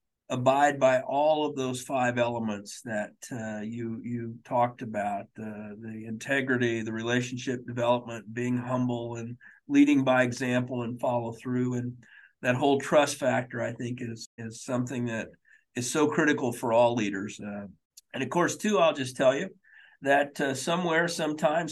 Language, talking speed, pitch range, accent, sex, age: English, 160 wpm, 120-155 Hz, American, male, 50-69